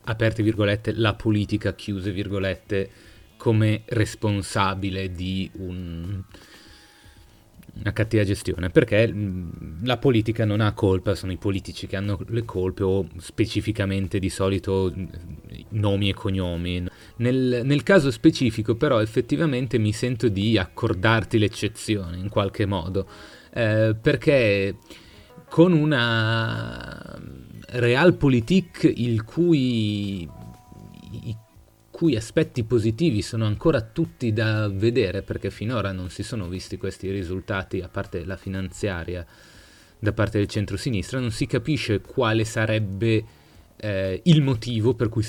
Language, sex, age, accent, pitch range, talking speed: Italian, male, 30-49, native, 95-115 Hz, 115 wpm